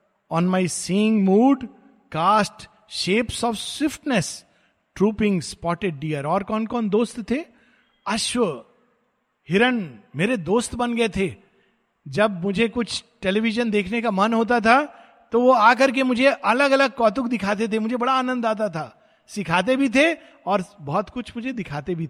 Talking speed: 150 wpm